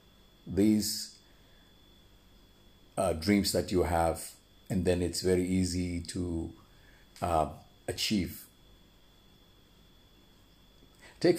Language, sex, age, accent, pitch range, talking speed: English, male, 50-69, Indian, 90-110 Hz, 80 wpm